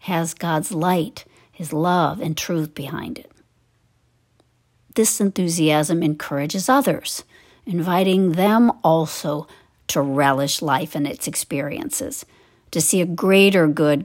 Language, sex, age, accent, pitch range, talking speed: English, female, 50-69, American, 150-195 Hz, 115 wpm